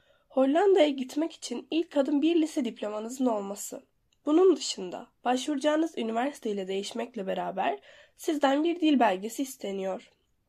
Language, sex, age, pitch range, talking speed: Turkish, female, 10-29, 215-295 Hz, 115 wpm